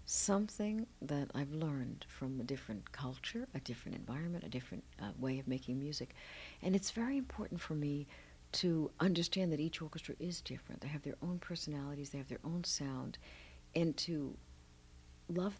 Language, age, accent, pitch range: English, 60-79, American, 130-165 Hz